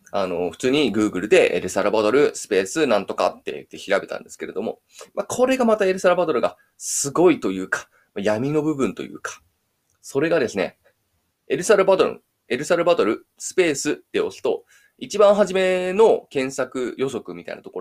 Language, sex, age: Japanese, male, 20-39